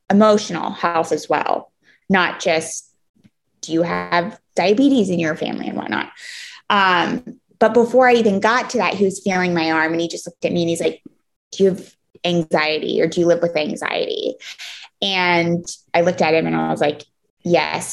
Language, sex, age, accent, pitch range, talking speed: English, female, 20-39, American, 170-220 Hz, 190 wpm